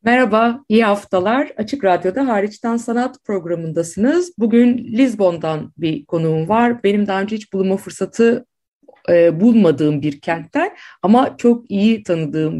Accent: native